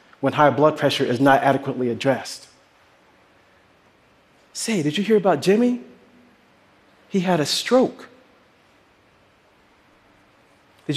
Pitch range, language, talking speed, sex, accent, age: 140-190 Hz, Russian, 105 wpm, male, American, 40-59